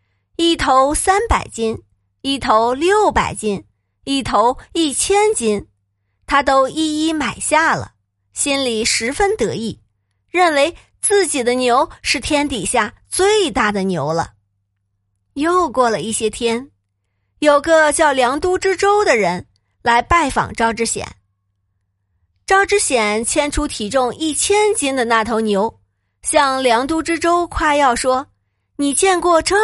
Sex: female